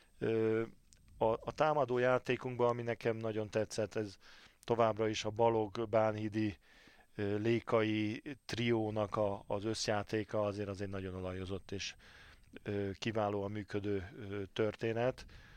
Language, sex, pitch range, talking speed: Hungarian, male, 100-115 Hz, 100 wpm